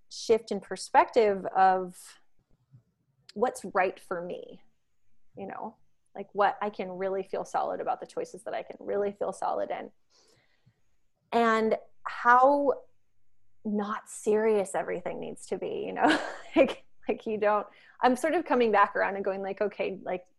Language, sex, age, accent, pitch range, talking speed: English, female, 20-39, American, 185-245 Hz, 155 wpm